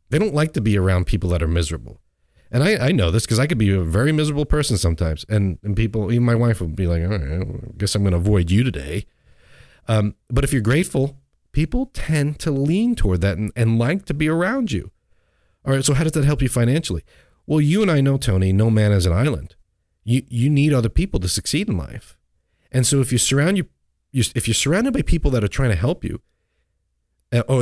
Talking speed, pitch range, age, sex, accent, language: 240 wpm, 90-120 Hz, 40-59, male, American, English